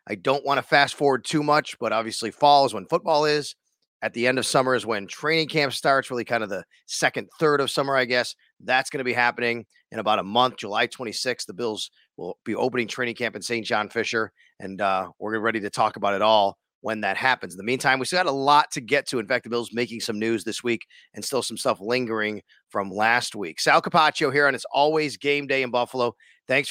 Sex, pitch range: male, 115-145 Hz